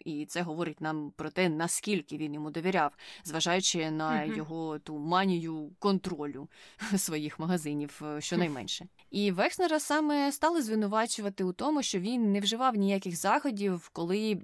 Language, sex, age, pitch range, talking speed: Ukrainian, female, 20-39, 165-200 Hz, 135 wpm